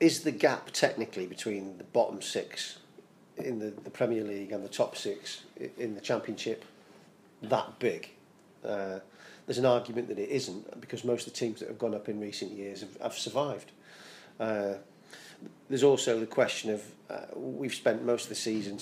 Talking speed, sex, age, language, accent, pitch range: 180 wpm, male, 40-59, English, British, 100-125 Hz